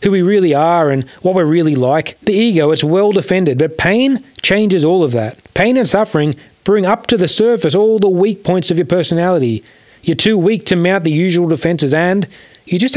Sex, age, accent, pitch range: male, 30-49, Australian, 155-205 Hz